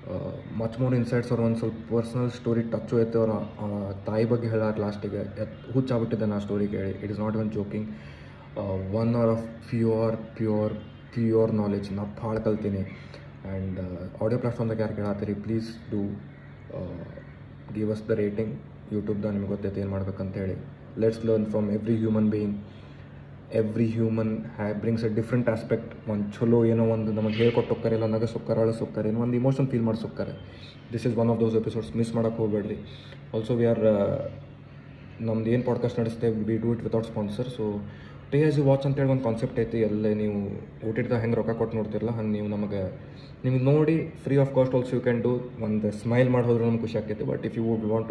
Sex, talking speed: male, 180 wpm